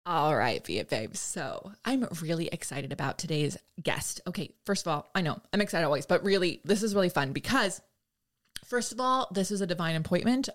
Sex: female